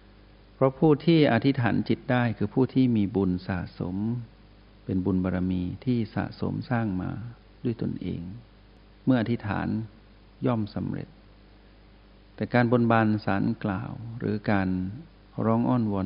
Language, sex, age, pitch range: Thai, male, 60-79, 95-115 Hz